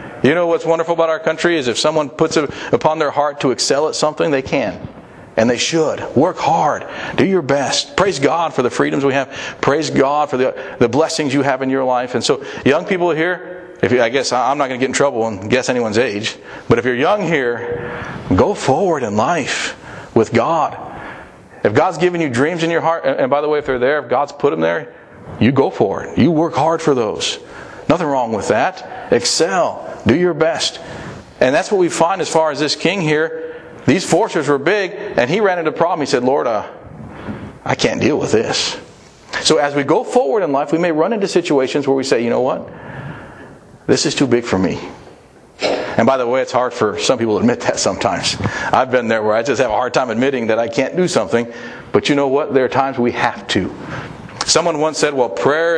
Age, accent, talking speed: 40-59, American, 230 wpm